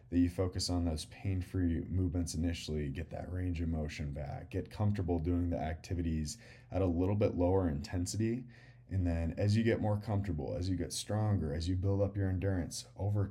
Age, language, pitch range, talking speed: 20-39, English, 85-105 Hz, 195 wpm